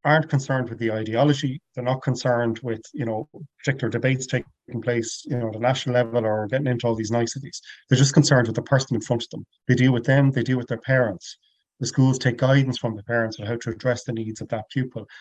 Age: 40-59